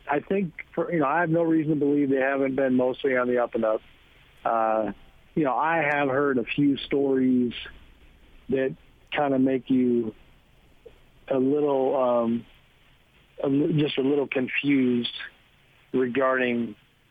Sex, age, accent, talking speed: male, 50-69, American, 150 wpm